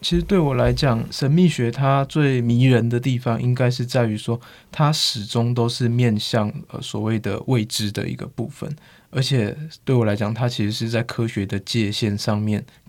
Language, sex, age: Chinese, male, 20-39